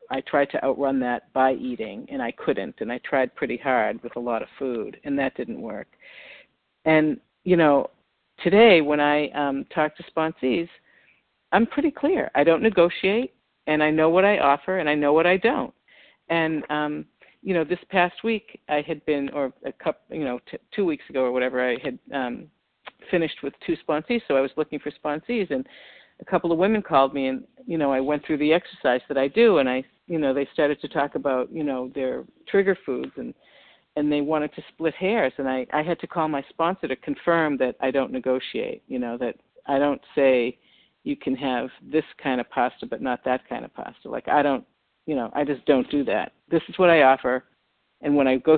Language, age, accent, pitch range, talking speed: English, 50-69, American, 130-170 Hz, 215 wpm